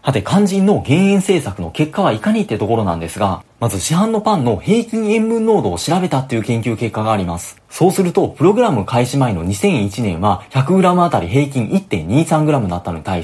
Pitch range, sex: 105-165 Hz, male